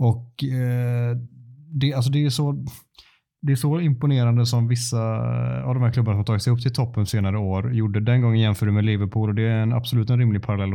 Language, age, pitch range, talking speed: Swedish, 20-39, 100-120 Hz, 220 wpm